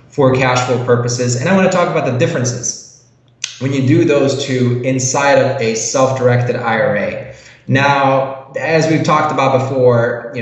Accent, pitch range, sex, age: American, 120-150 Hz, male, 20-39